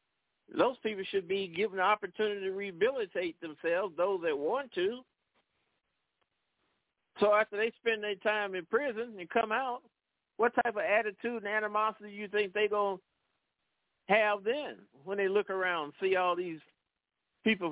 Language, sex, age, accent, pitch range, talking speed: English, male, 50-69, American, 190-230 Hz, 165 wpm